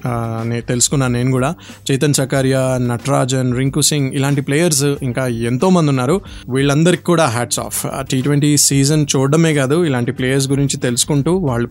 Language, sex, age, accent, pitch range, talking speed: Telugu, male, 20-39, native, 125-150 Hz, 145 wpm